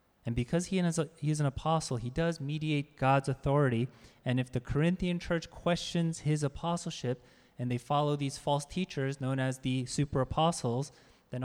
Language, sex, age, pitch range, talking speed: English, male, 20-39, 130-160 Hz, 160 wpm